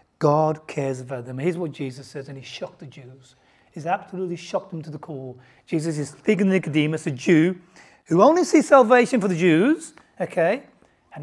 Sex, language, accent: male, English, British